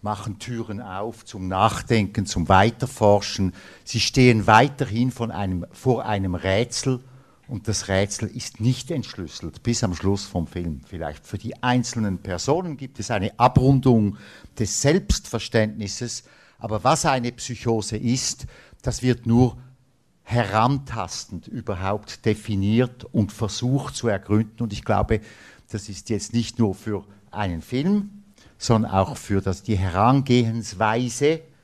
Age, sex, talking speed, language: 60-79, male, 130 wpm, German